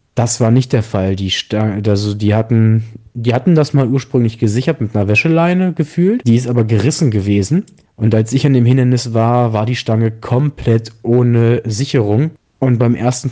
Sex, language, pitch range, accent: male, German, 110-130 Hz, German